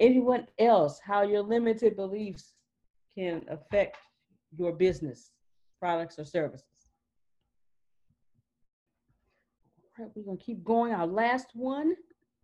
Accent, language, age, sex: American, English, 40-59, female